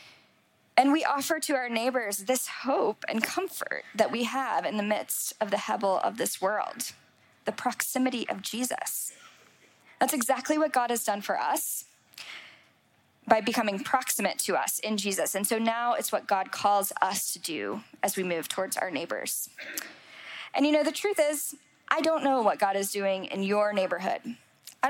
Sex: female